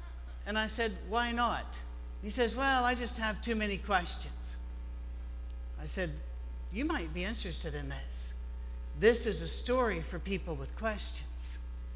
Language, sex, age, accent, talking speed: English, male, 60-79, American, 150 wpm